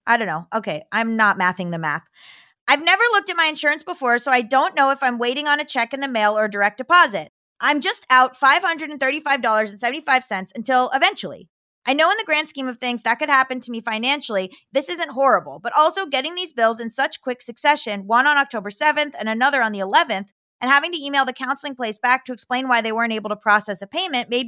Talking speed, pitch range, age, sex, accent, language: 225 wpm, 220-290 Hz, 20-39, female, American, English